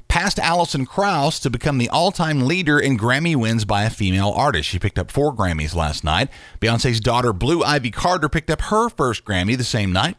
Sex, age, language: male, 40-59, English